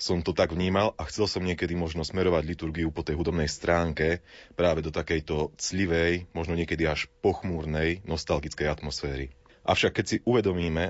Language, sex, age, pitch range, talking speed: Slovak, male, 30-49, 80-90 Hz, 160 wpm